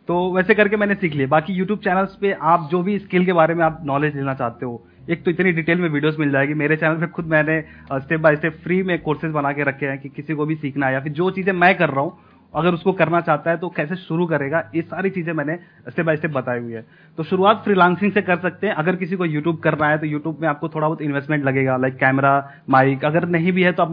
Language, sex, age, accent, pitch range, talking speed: Hindi, male, 30-49, native, 140-180 Hz, 275 wpm